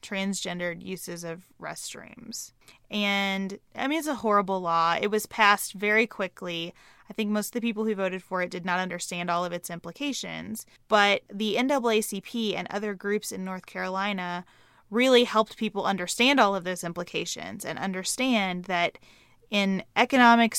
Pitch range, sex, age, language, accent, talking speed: 175-215 Hz, female, 20-39, English, American, 160 wpm